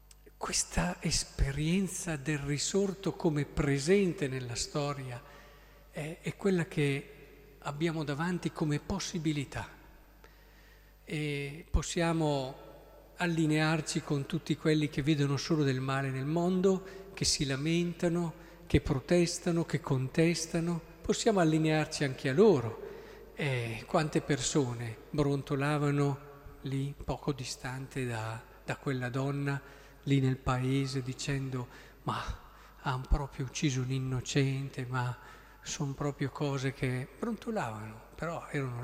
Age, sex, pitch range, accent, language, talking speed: 50-69, male, 140-170 Hz, native, Italian, 105 wpm